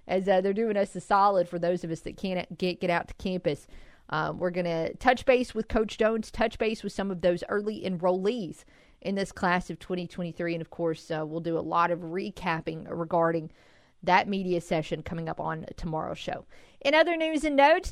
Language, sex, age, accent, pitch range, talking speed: English, female, 40-59, American, 175-250 Hz, 215 wpm